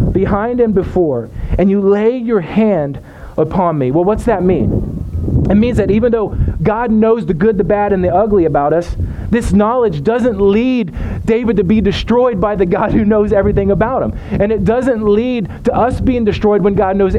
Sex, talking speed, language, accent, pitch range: male, 200 wpm, English, American, 180-220 Hz